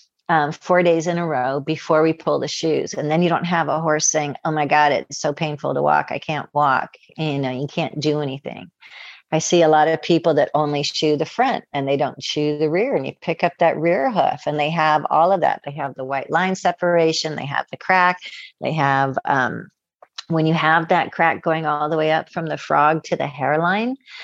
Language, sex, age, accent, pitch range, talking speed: English, female, 50-69, American, 150-170 Hz, 235 wpm